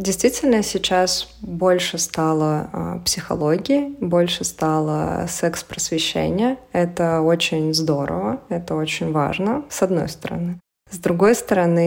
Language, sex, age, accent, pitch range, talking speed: Russian, female, 20-39, native, 155-175 Hz, 100 wpm